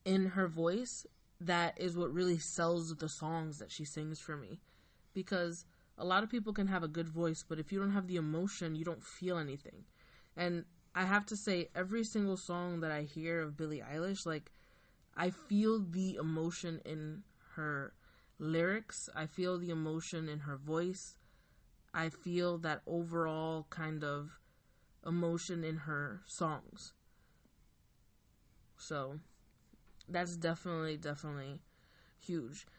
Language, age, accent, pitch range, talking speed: English, 20-39, American, 155-190 Hz, 145 wpm